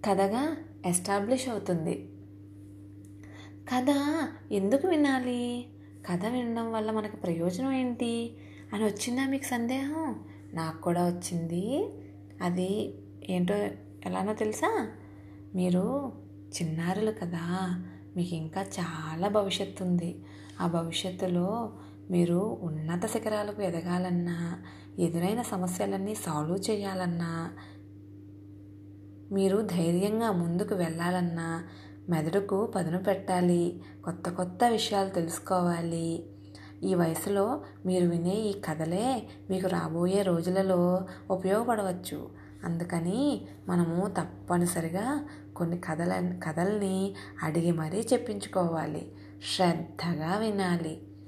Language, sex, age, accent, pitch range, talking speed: Telugu, female, 20-39, native, 155-200 Hz, 85 wpm